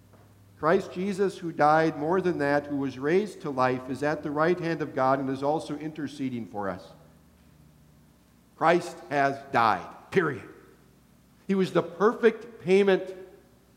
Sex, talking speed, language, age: male, 150 wpm, English, 50-69